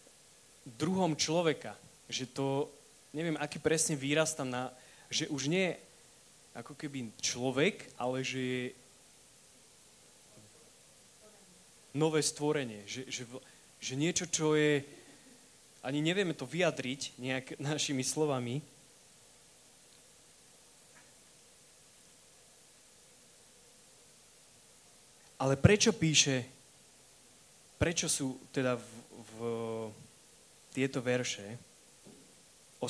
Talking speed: 85 wpm